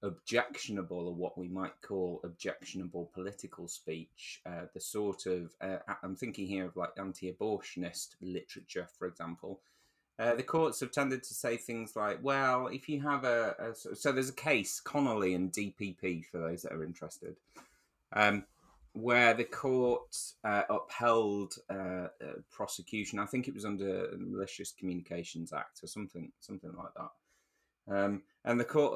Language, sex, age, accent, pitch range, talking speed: English, male, 30-49, British, 90-115 Hz, 160 wpm